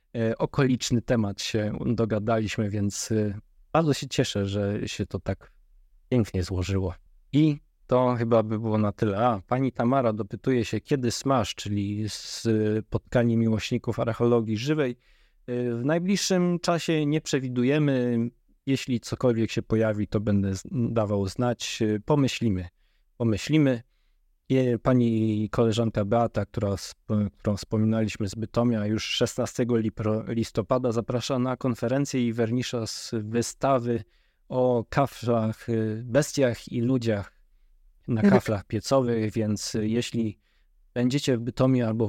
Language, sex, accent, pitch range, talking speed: Polish, male, native, 105-125 Hz, 115 wpm